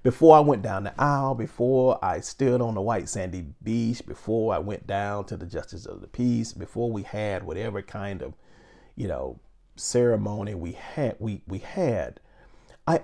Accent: American